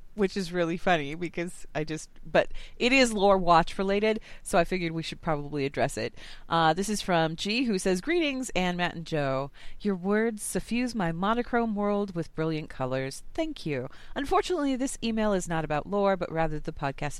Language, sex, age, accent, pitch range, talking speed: English, female, 30-49, American, 160-210 Hz, 190 wpm